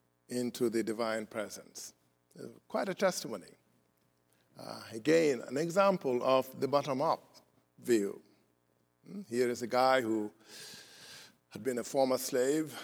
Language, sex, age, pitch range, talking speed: English, male, 50-69, 115-175 Hz, 120 wpm